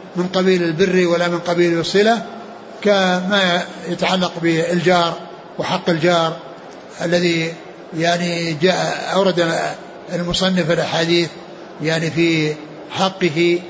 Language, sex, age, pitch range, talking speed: Arabic, male, 60-79, 165-180 Hz, 90 wpm